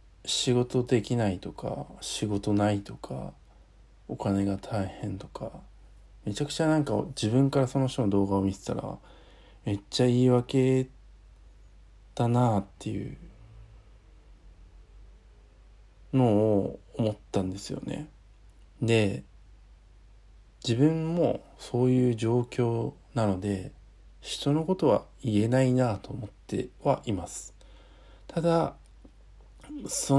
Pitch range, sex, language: 100-125 Hz, male, Japanese